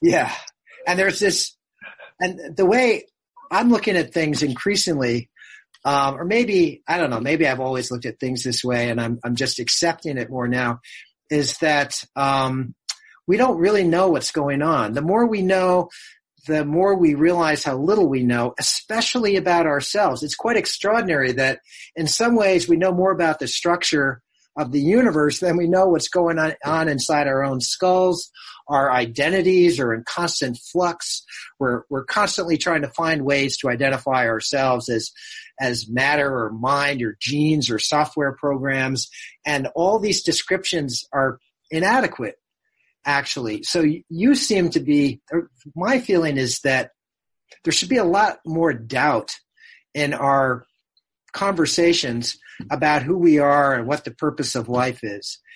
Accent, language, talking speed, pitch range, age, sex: American, English, 160 wpm, 130-175 Hz, 40-59, male